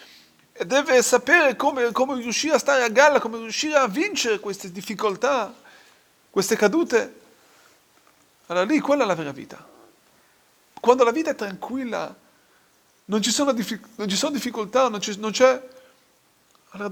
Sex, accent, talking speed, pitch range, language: male, native, 130 wpm, 195-260 Hz, Italian